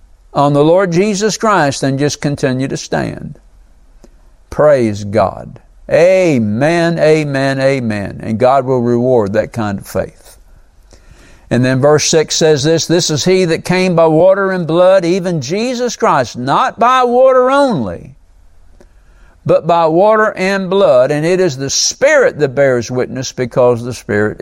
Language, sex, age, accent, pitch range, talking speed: English, male, 60-79, American, 125-185 Hz, 150 wpm